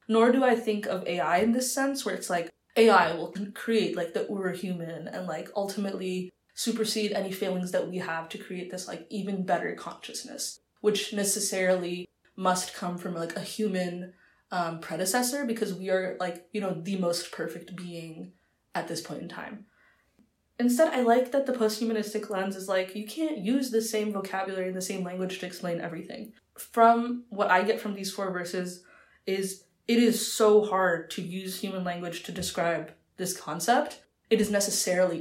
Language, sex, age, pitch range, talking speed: English, female, 20-39, 180-215 Hz, 180 wpm